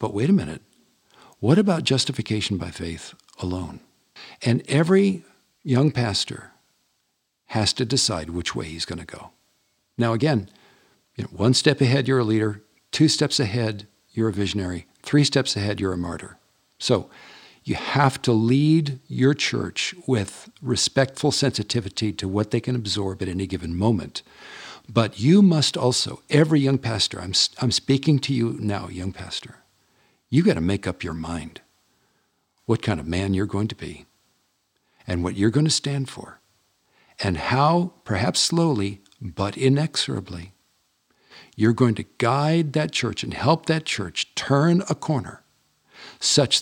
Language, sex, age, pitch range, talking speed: English, male, 60-79, 100-140 Hz, 155 wpm